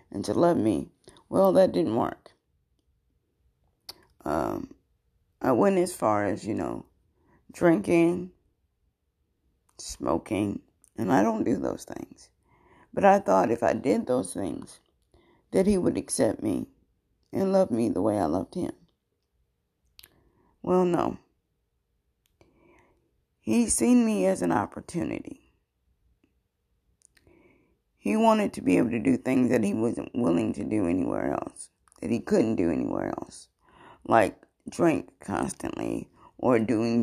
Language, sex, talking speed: English, female, 130 wpm